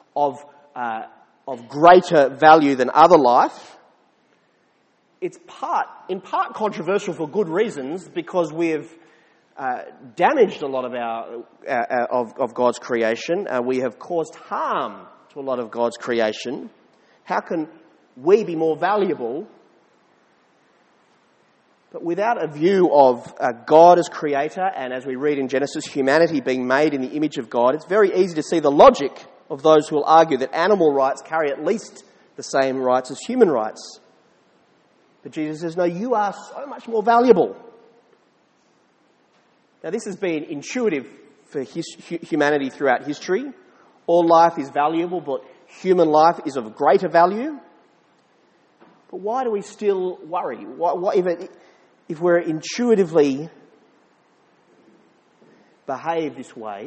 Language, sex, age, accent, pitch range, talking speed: English, male, 30-49, Australian, 135-180 Hz, 145 wpm